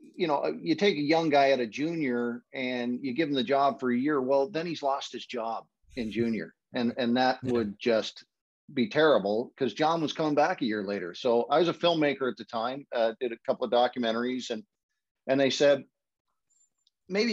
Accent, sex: American, male